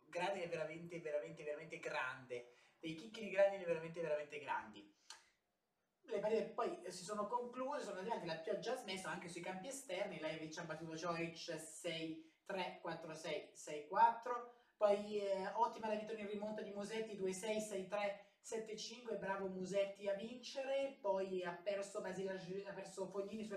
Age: 20-39